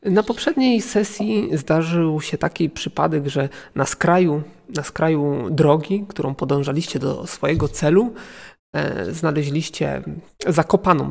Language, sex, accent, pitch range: Polish, male, native, 150-195 Hz